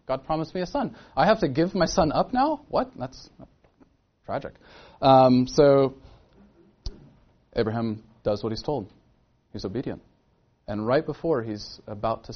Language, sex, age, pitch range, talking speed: English, male, 30-49, 105-135 Hz, 150 wpm